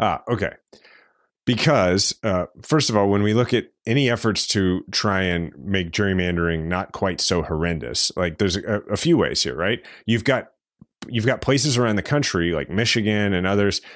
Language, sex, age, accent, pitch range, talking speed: English, male, 30-49, American, 90-115 Hz, 180 wpm